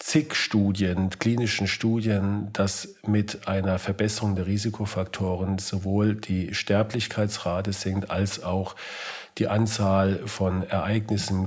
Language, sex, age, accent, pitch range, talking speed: German, male, 40-59, German, 95-105 Hz, 110 wpm